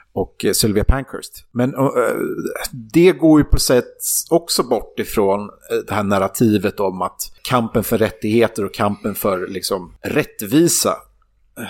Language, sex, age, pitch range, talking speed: English, male, 30-49, 105-140 Hz, 135 wpm